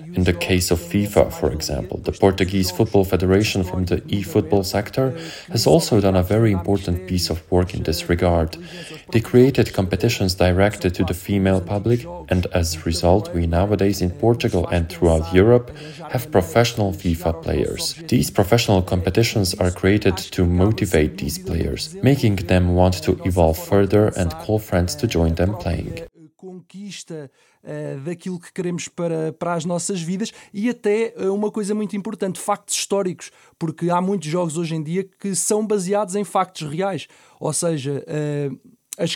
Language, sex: English, male